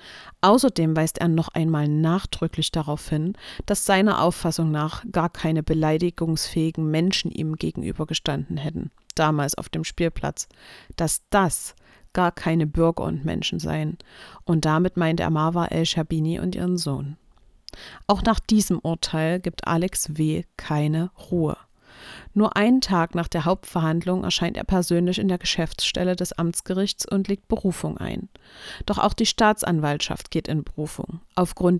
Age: 50-69